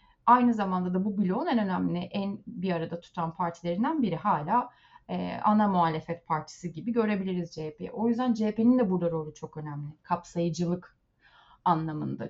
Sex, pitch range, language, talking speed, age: female, 170-205 Hz, Turkish, 150 wpm, 30-49